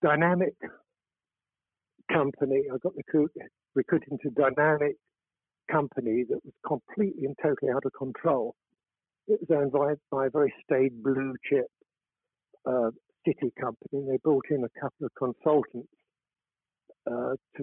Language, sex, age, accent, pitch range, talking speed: English, male, 60-79, British, 130-160 Hz, 135 wpm